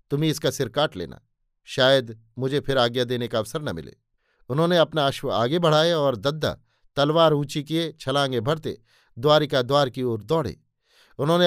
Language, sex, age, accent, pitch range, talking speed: Hindi, male, 50-69, native, 130-155 Hz, 165 wpm